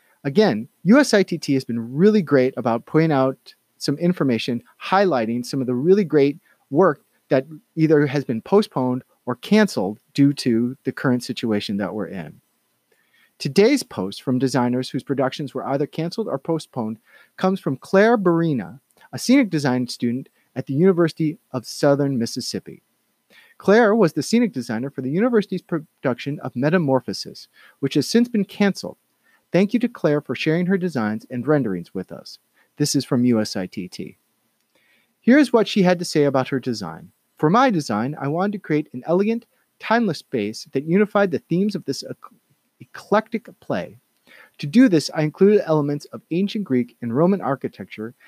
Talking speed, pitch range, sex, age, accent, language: 160 wpm, 130-195 Hz, male, 30-49, American, English